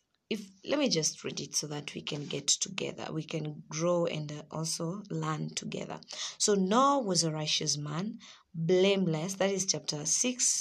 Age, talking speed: 20-39, 165 wpm